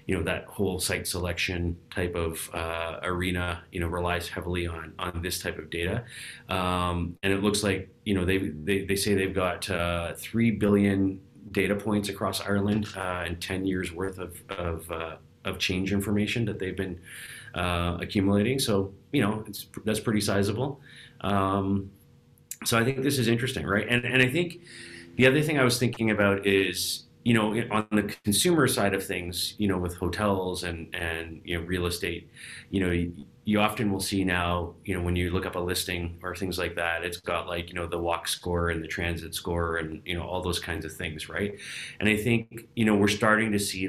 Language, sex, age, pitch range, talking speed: English, male, 30-49, 85-100 Hz, 205 wpm